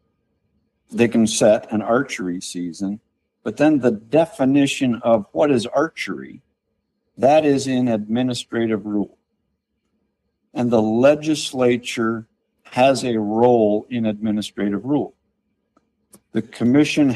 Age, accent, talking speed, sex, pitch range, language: 60-79, American, 105 wpm, male, 105-125 Hz, English